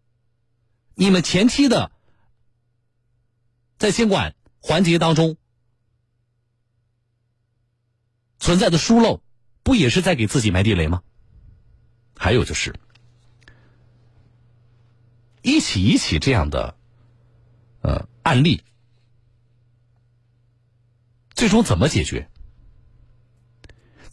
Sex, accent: male, native